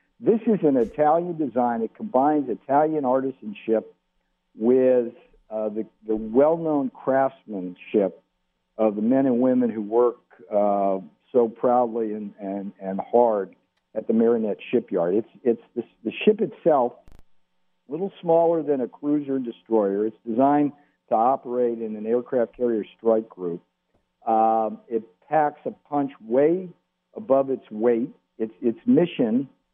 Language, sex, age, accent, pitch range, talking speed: English, male, 50-69, American, 110-140 Hz, 140 wpm